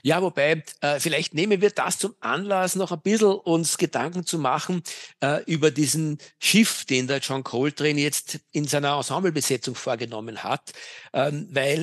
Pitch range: 135-160 Hz